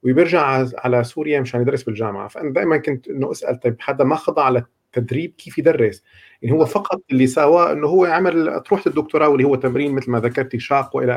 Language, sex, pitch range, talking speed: Arabic, male, 120-145 Hz, 200 wpm